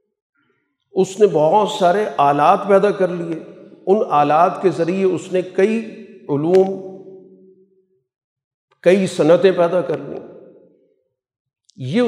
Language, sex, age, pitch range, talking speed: Urdu, male, 50-69, 155-205 Hz, 110 wpm